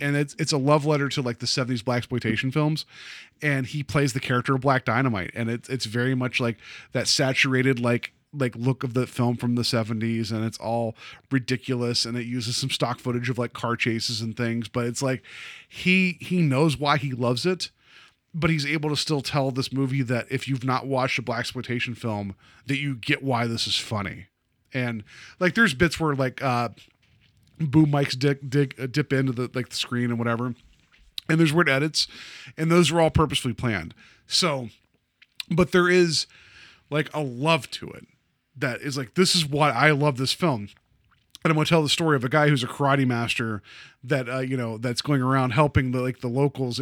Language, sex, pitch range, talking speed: English, male, 120-150 Hz, 210 wpm